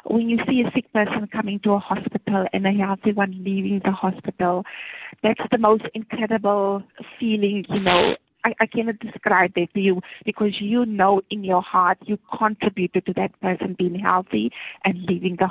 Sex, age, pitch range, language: female, 30-49, 190-225 Hz, English